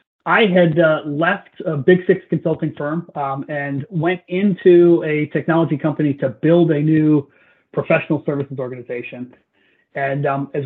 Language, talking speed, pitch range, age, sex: English, 145 wpm, 145-175 Hz, 30-49, male